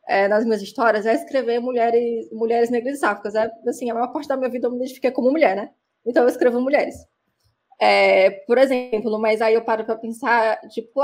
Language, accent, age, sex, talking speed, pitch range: Portuguese, Brazilian, 20-39, female, 205 wpm, 215-255 Hz